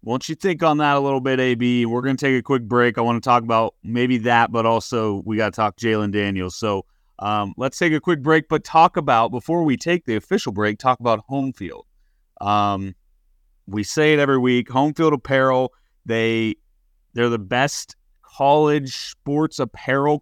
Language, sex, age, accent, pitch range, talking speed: English, male, 30-49, American, 100-130 Hz, 200 wpm